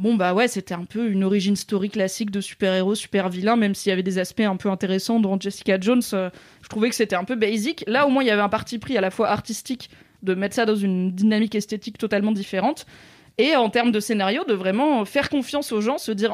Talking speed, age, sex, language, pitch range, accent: 255 wpm, 20-39, female, French, 200-245 Hz, French